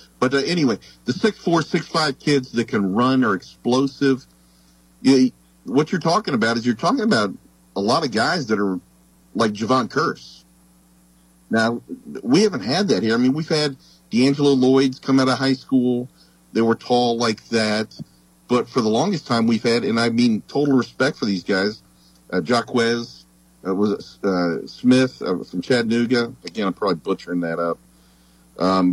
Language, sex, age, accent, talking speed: English, male, 50-69, American, 180 wpm